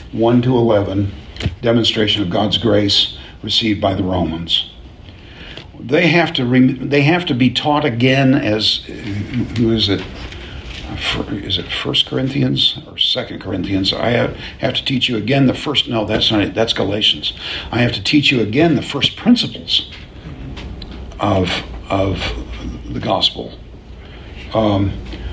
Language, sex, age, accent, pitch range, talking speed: English, male, 50-69, American, 95-125 Hz, 140 wpm